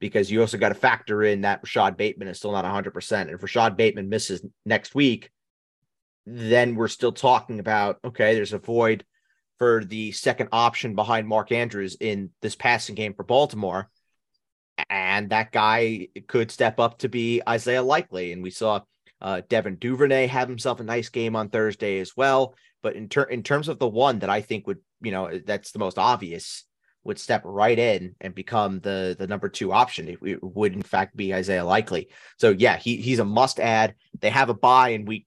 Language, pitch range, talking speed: English, 100-125 Hz, 200 wpm